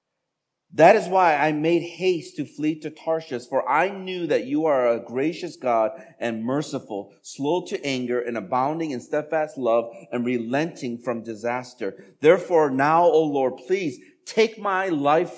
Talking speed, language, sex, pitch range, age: 160 wpm, English, male, 125-165 Hz, 40-59